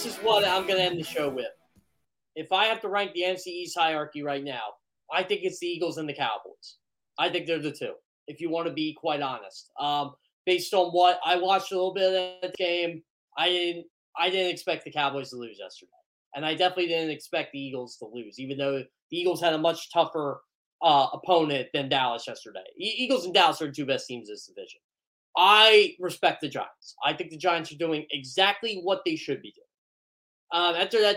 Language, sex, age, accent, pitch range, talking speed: English, male, 20-39, American, 150-200 Hz, 220 wpm